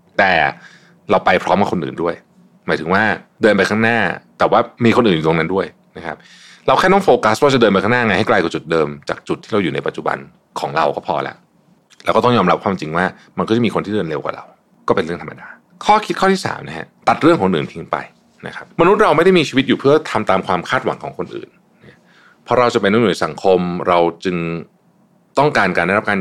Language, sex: Thai, male